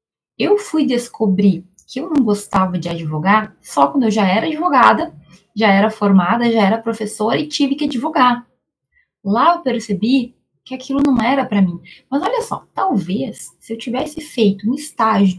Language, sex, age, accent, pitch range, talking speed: Portuguese, female, 10-29, Brazilian, 200-275 Hz, 170 wpm